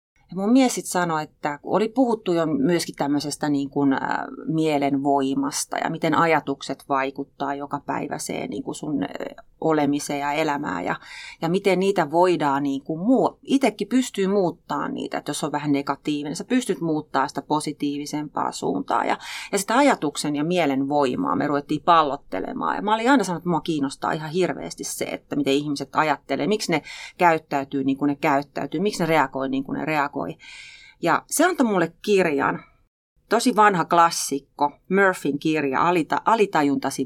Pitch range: 145-215 Hz